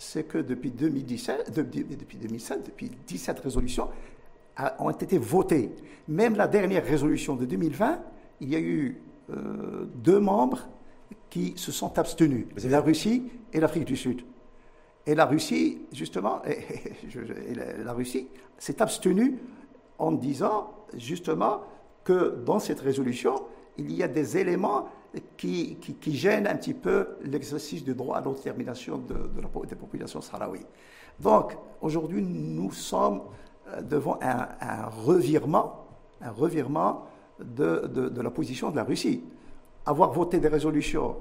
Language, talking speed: French, 145 wpm